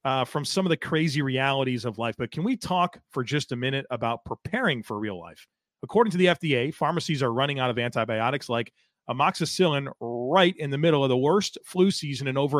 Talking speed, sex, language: 215 wpm, male, English